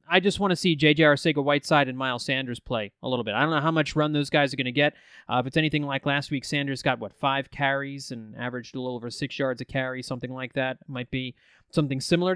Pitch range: 135-175 Hz